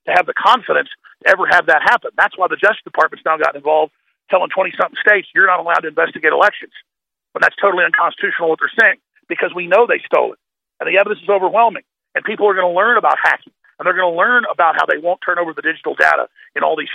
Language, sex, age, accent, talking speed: English, male, 40-59, American, 245 wpm